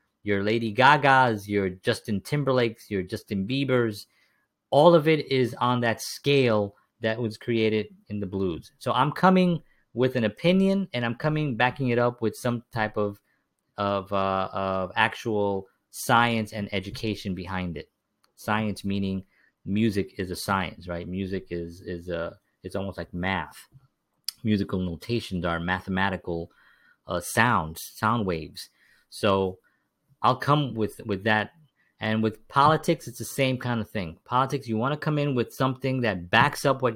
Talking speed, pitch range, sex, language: 155 wpm, 100-130 Hz, male, English